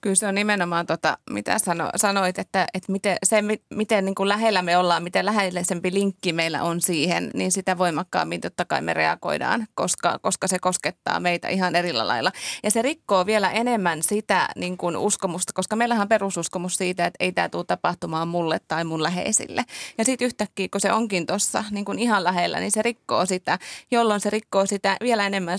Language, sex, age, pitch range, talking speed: Finnish, female, 20-39, 175-205 Hz, 190 wpm